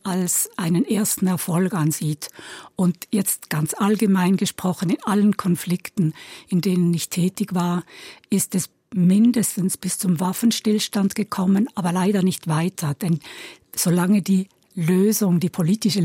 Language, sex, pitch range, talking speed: German, female, 180-210 Hz, 130 wpm